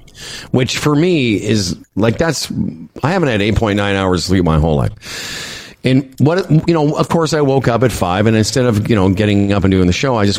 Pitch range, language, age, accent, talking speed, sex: 100-130 Hz, English, 50-69, American, 225 wpm, male